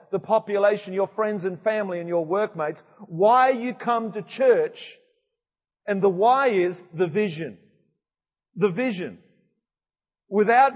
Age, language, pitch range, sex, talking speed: 40-59, English, 150-210 Hz, male, 130 wpm